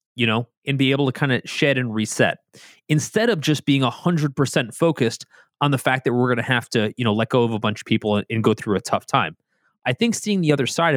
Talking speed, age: 250 wpm, 30-49